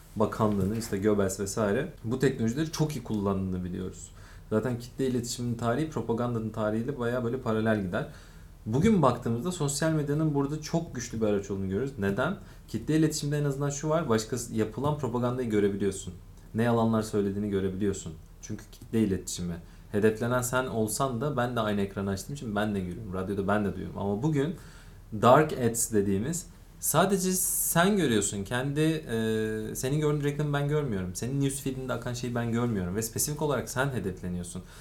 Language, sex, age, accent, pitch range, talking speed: Turkish, male, 40-59, native, 105-135 Hz, 160 wpm